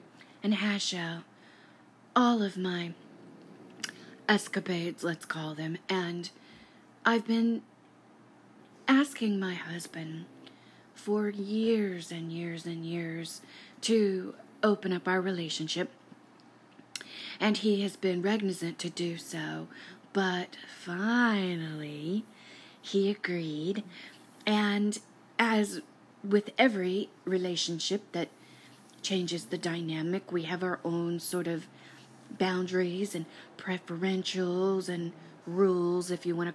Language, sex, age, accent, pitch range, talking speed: English, female, 30-49, American, 170-205 Hz, 105 wpm